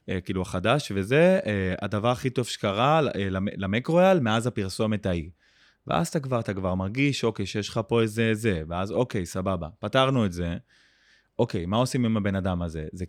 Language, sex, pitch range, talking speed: Hebrew, male, 95-120 Hz, 185 wpm